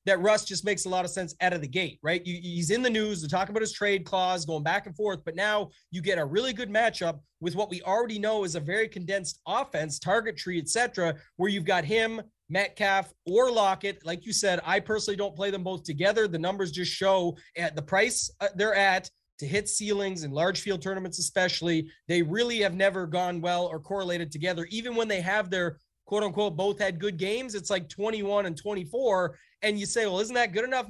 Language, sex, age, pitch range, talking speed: English, male, 30-49, 170-210 Hz, 220 wpm